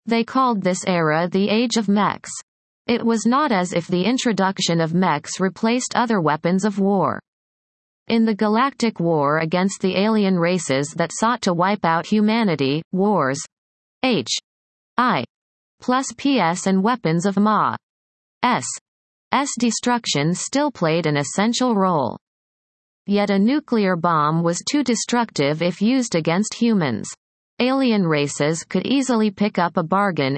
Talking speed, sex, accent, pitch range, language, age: 140 wpm, female, American, 170-230 Hz, English, 30-49